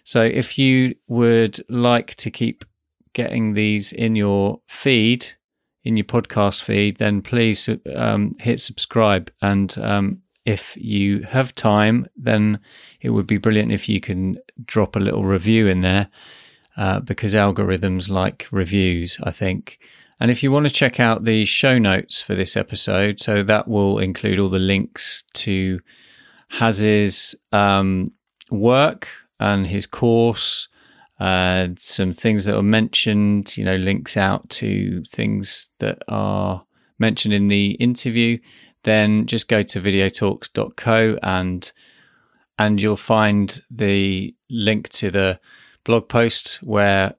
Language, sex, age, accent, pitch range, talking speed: English, male, 30-49, British, 100-115 Hz, 140 wpm